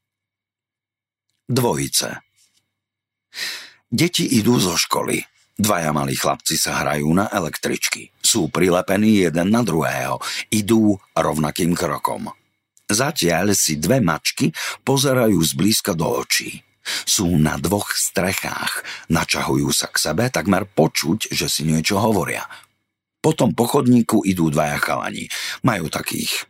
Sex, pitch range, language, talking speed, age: male, 95-115 Hz, Slovak, 110 wpm, 50-69